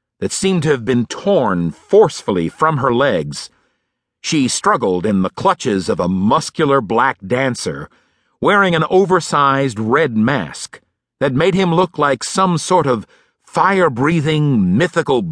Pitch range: 120-165 Hz